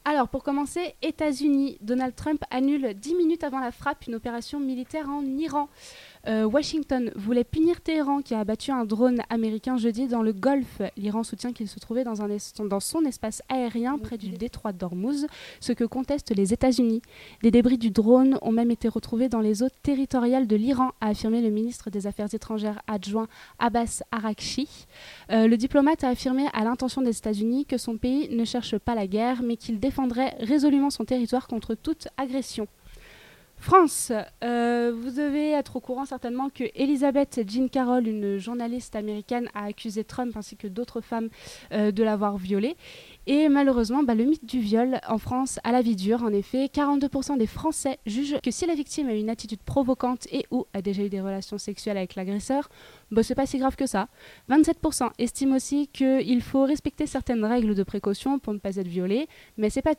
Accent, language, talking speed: French, French, 190 wpm